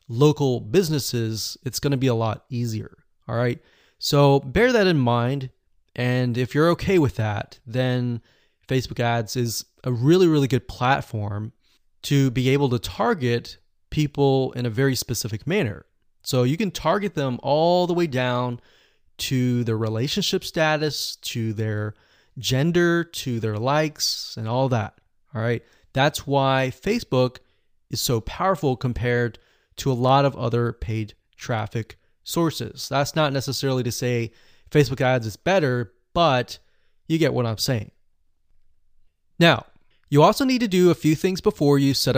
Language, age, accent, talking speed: English, 30-49, American, 155 wpm